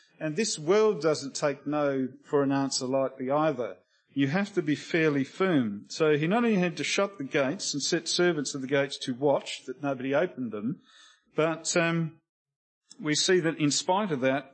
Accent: Australian